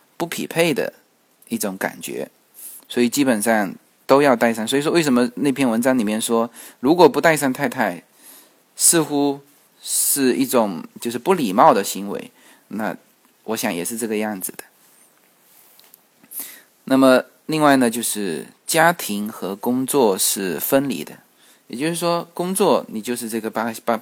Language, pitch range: Chinese, 110-145 Hz